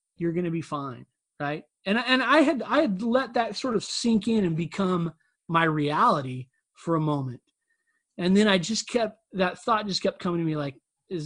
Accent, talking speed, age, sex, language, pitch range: American, 215 wpm, 30-49, male, English, 145-185 Hz